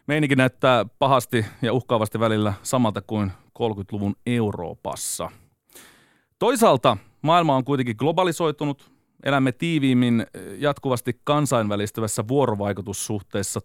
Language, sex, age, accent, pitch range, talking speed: Finnish, male, 30-49, native, 110-135 Hz, 90 wpm